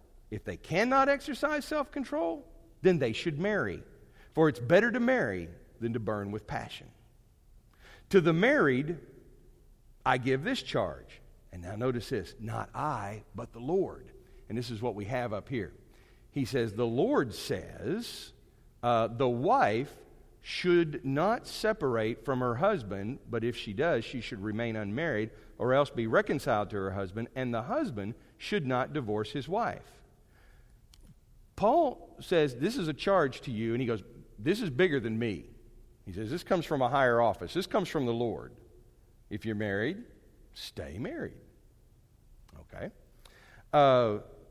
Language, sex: English, male